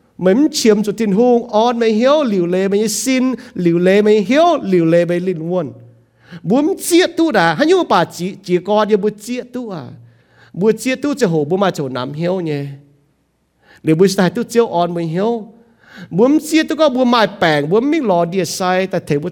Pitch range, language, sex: 145-240 Hz, English, male